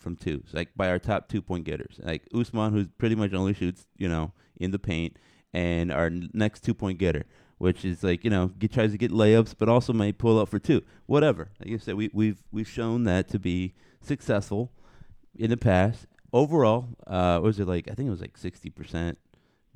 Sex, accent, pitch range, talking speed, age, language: male, American, 90-120 Hz, 215 wpm, 30-49, English